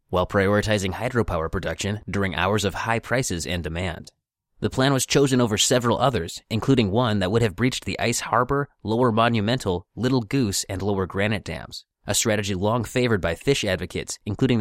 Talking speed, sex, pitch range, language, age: 175 wpm, male, 95-120 Hz, English, 30-49